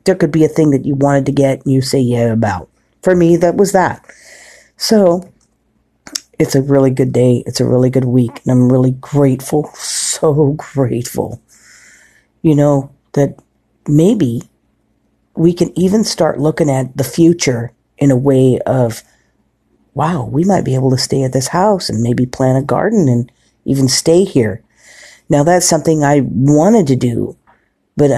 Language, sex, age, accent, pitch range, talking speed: English, female, 50-69, American, 125-155 Hz, 170 wpm